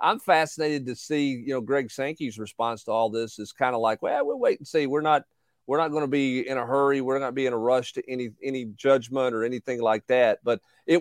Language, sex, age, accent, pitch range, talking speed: English, male, 40-59, American, 115-135 Hz, 255 wpm